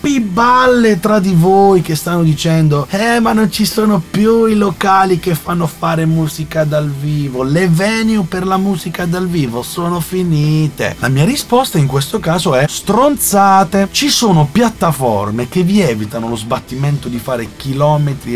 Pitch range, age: 130-190 Hz, 30-49